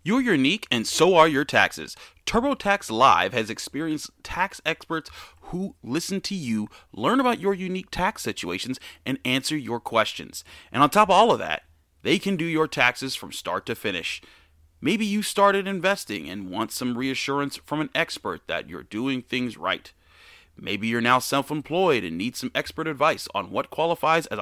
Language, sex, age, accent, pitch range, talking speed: English, male, 30-49, American, 120-175 Hz, 180 wpm